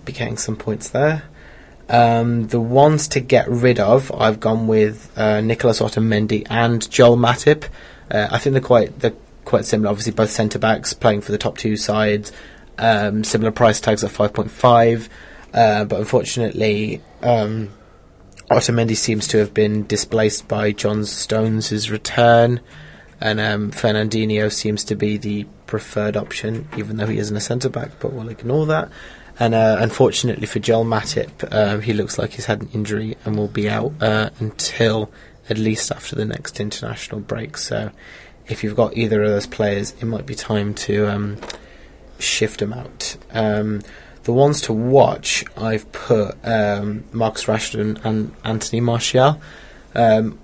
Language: English